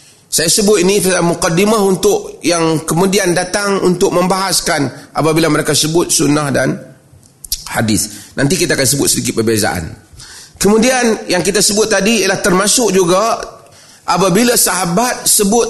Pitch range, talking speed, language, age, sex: 150-185 Hz, 125 wpm, Malay, 30-49, male